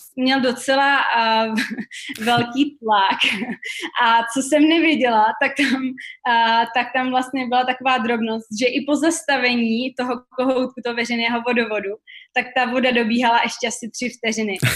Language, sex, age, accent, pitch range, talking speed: Czech, female, 20-39, native, 230-265 Hz, 130 wpm